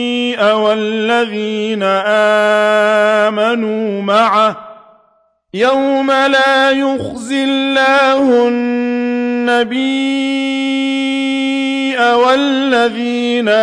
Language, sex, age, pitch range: Arabic, male, 50-69, 215-265 Hz